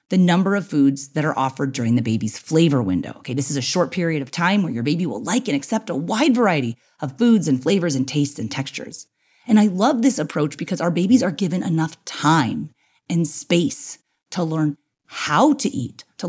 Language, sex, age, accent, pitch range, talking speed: English, female, 30-49, American, 135-210 Hz, 215 wpm